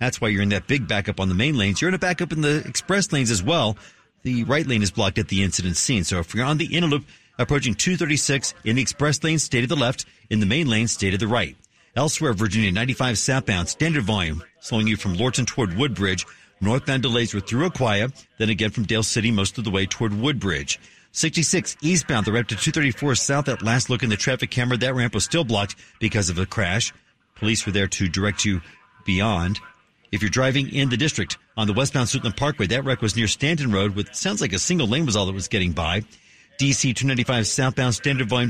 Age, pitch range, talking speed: 40-59, 105-135 Hz, 230 wpm